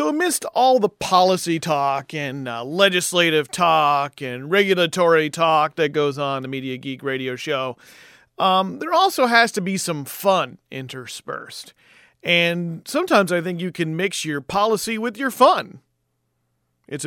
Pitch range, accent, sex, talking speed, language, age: 140-205 Hz, American, male, 150 wpm, English, 40-59